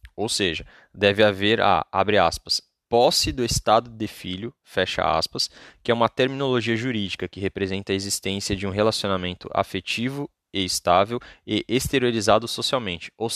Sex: male